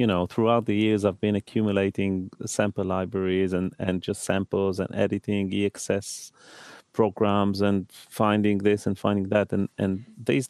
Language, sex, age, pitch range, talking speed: English, male, 30-49, 95-110 Hz, 155 wpm